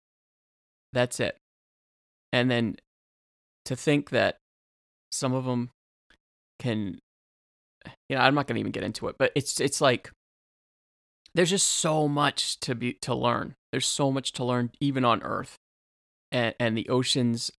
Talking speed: 155 wpm